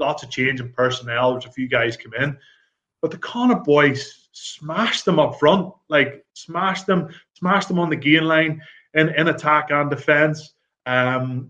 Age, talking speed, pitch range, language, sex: 20-39, 175 wpm, 125-145 Hz, English, male